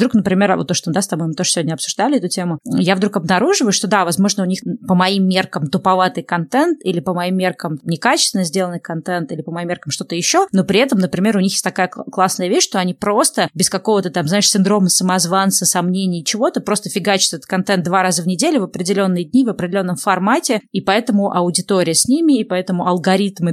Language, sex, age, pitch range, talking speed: Russian, female, 20-39, 175-205 Hz, 210 wpm